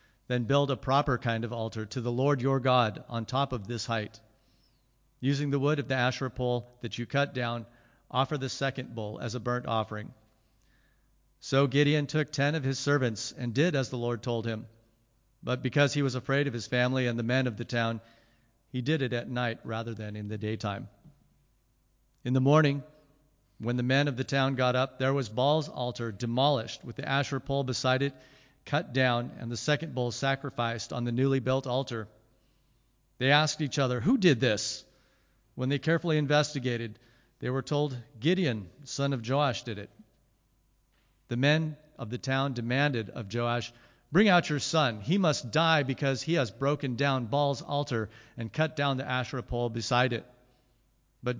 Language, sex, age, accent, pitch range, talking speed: English, male, 50-69, American, 120-140 Hz, 185 wpm